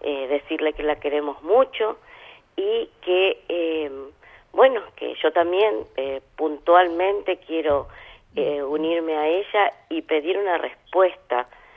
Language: Spanish